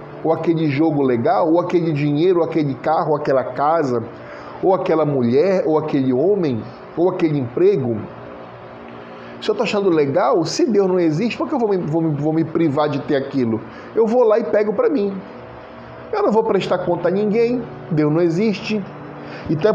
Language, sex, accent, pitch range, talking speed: Portuguese, male, Brazilian, 135-190 Hz, 185 wpm